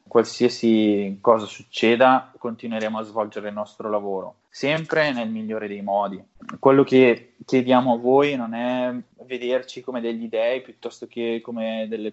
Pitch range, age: 110-130 Hz, 20-39